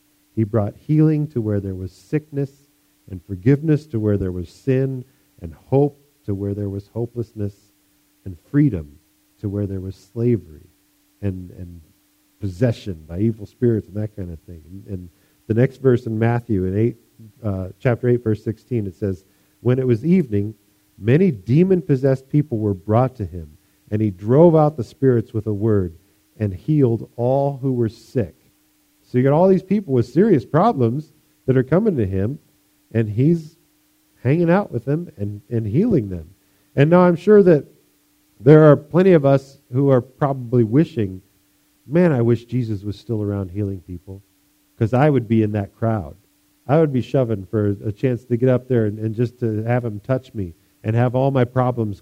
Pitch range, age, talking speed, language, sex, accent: 100-140 Hz, 50-69, 185 wpm, English, male, American